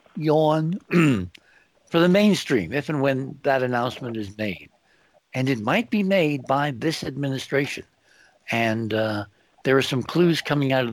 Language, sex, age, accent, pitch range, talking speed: English, male, 60-79, American, 115-155 Hz, 155 wpm